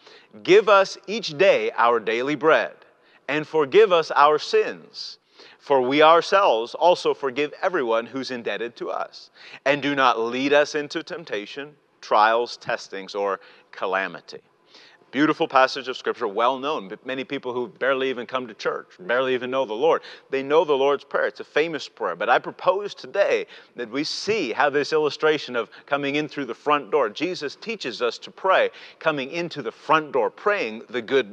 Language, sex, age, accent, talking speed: English, male, 40-59, American, 170 wpm